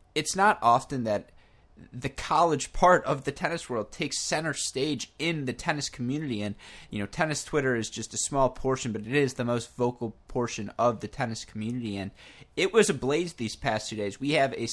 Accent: American